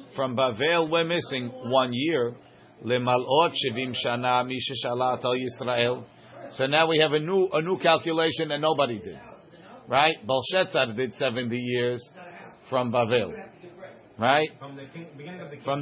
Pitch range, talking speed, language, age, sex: 130-165 Hz, 100 wpm, English, 50-69, male